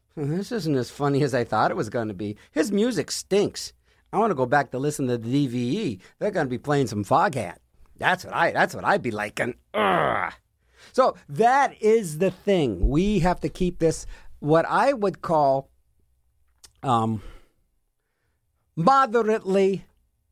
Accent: American